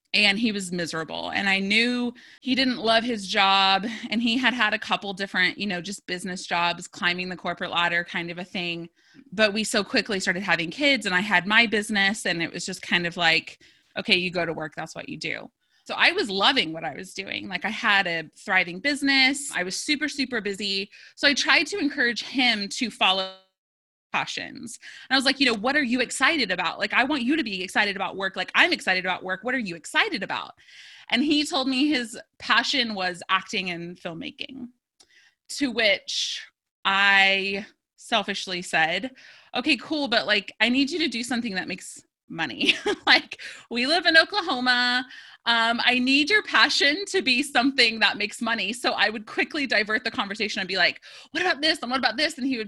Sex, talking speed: female, 205 wpm